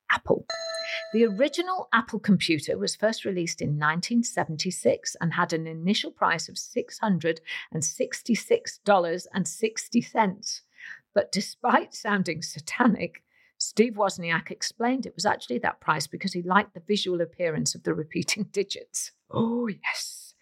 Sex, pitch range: female, 165-225 Hz